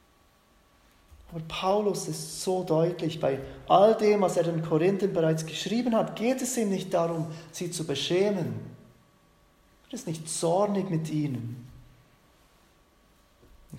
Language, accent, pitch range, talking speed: German, German, 150-185 Hz, 130 wpm